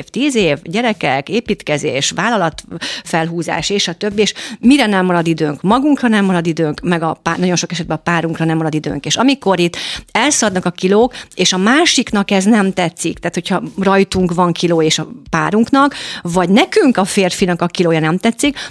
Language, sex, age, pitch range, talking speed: Hungarian, female, 50-69, 165-205 Hz, 180 wpm